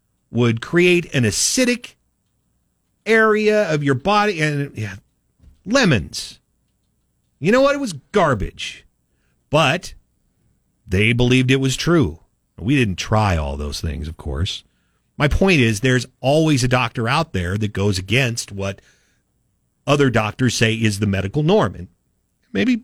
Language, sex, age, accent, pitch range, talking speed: English, male, 50-69, American, 95-150 Hz, 140 wpm